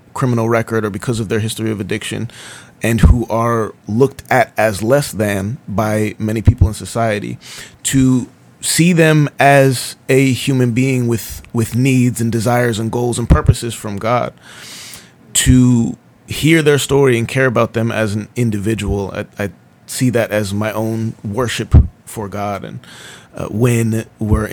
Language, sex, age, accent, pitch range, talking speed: English, male, 30-49, American, 110-130 Hz, 160 wpm